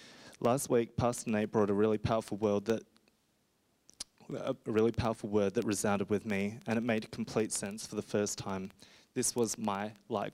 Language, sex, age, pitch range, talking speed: English, male, 20-39, 105-120 Hz, 180 wpm